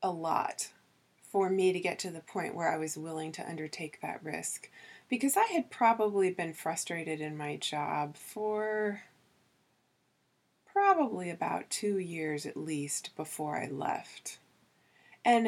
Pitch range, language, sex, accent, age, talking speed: 165-235 Hz, English, female, American, 20-39, 145 wpm